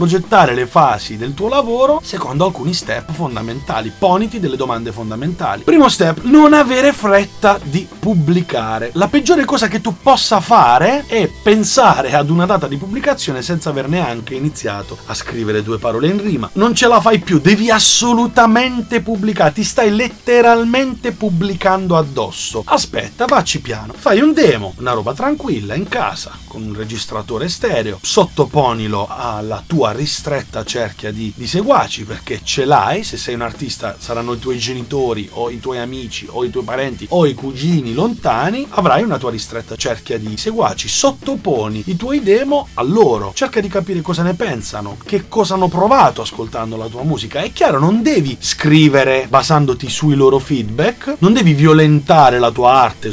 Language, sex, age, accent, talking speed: Italian, male, 30-49, native, 165 wpm